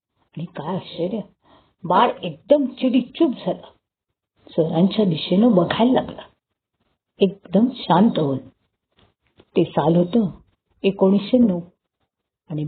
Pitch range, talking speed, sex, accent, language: 180-255 Hz, 85 wpm, female, native, Marathi